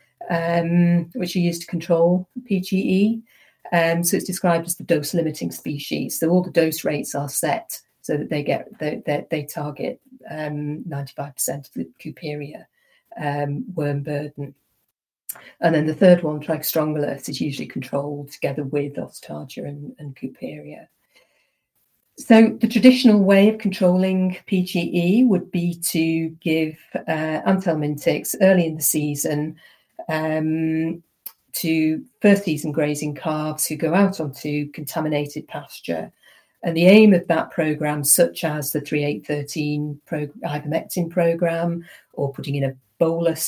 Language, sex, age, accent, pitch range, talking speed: English, female, 40-59, British, 150-175 Hz, 140 wpm